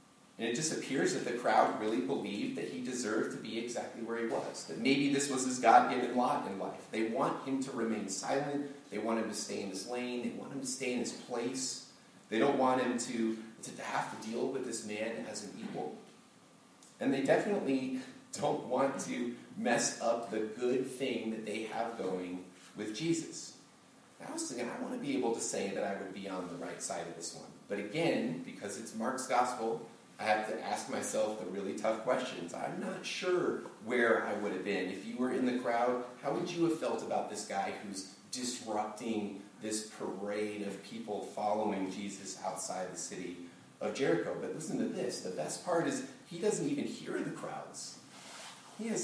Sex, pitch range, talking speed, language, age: male, 105-135 Hz, 200 wpm, English, 30-49